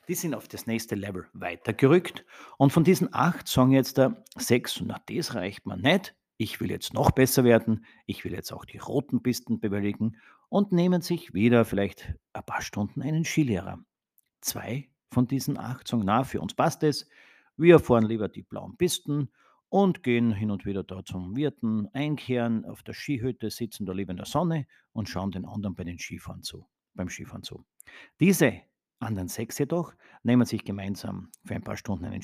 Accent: Austrian